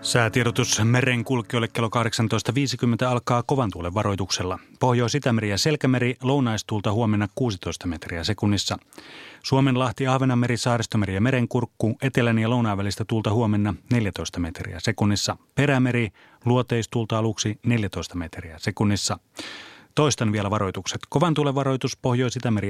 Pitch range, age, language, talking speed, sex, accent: 105-130 Hz, 30-49, Finnish, 115 wpm, male, native